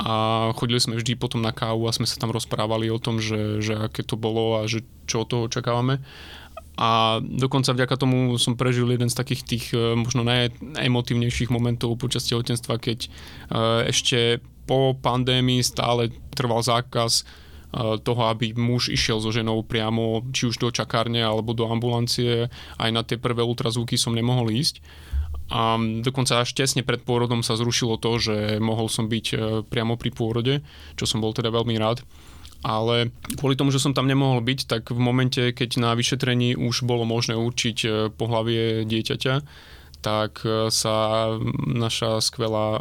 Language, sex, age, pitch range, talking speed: Slovak, male, 20-39, 110-125 Hz, 160 wpm